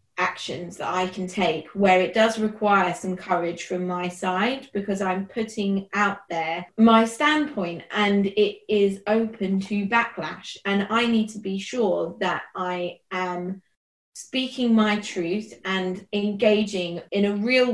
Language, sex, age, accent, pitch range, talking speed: English, female, 30-49, British, 180-210 Hz, 150 wpm